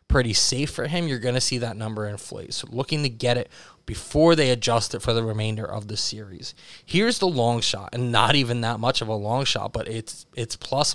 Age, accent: 20-39, American